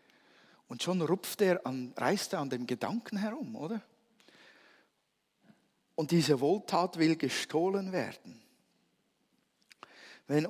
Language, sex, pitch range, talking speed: German, male, 140-205 Hz, 90 wpm